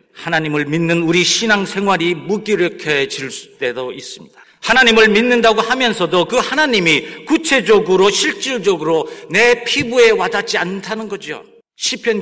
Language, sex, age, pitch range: Korean, male, 50-69, 165-245 Hz